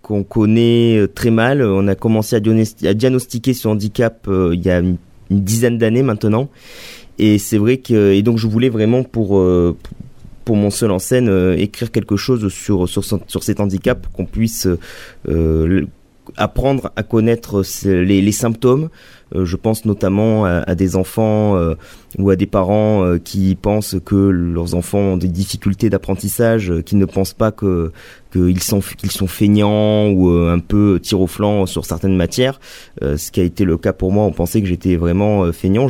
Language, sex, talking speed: French, male, 195 wpm